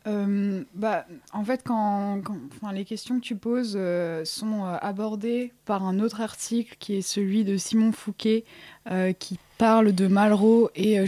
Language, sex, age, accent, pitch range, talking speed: French, female, 20-39, French, 180-215 Hz, 175 wpm